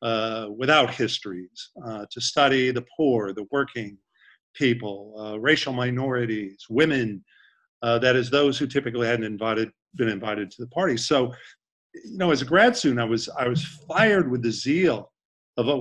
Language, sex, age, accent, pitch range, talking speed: English, male, 50-69, American, 115-135 Hz, 170 wpm